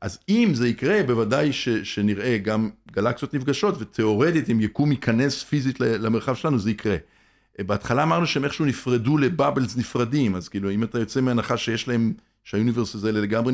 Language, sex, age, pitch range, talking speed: Hebrew, male, 50-69, 105-130 Hz, 165 wpm